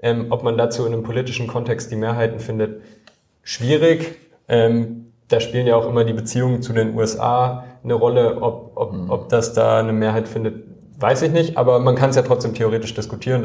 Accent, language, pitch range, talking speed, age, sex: German, German, 110-125 Hz, 195 wpm, 20-39, male